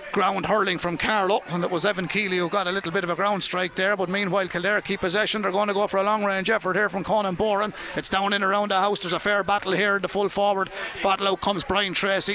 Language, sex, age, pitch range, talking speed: English, male, 30-49, 195-210 Hz, 280 wpm